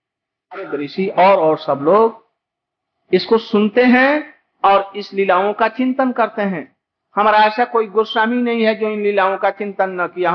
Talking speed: 155 wpm